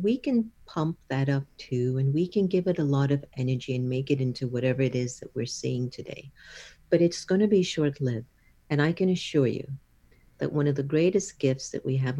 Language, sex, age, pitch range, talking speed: English, female, 50-69, 135-170 Hz, 225 wpm